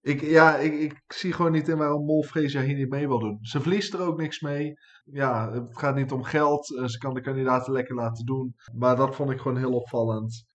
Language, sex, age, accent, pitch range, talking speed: Dutch, male, 20-39, Dutch, 120-145 Hz, 235 wpm